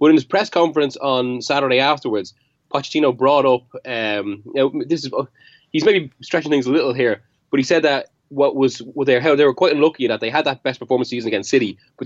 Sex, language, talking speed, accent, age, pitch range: male, English, 240 wpm, Irish, 20-39, 125-155 Hz